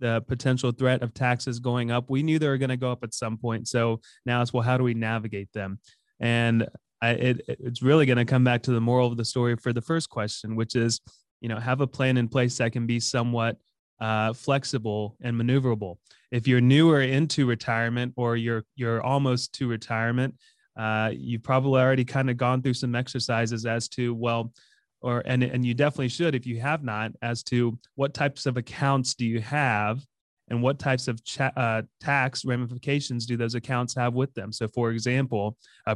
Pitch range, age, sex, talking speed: 115-130 Hz, 20-39, male, 200 wpm